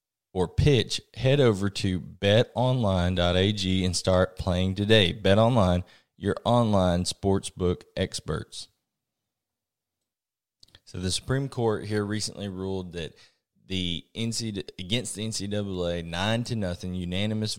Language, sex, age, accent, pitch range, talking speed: English, male, 20-39, American, 90-105 Hz, 115 wpm